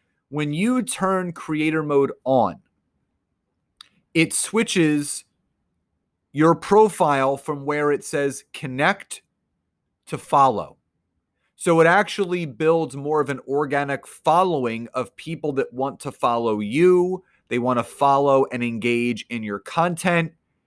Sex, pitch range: male, 140-190 Hz